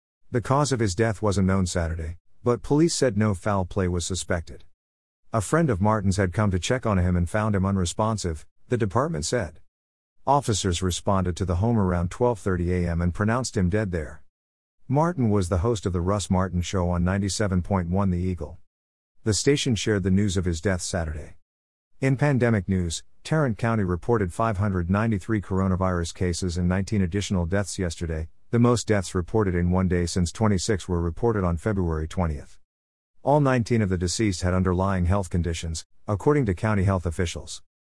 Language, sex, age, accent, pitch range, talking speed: English, male, 50-69, American, 85-110 Hz, 175 wpm